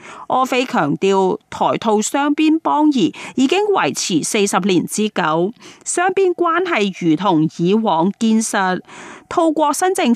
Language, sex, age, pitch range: Chinese, female, 30-49, 190-290 Hz